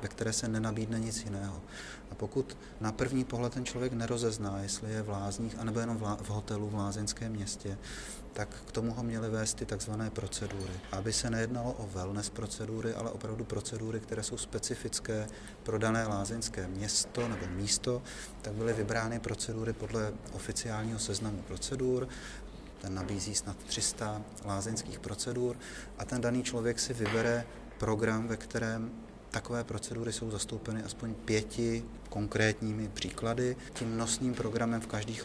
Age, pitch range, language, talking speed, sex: 30-49, 105-115 Hz, Czech, 150 wpm, male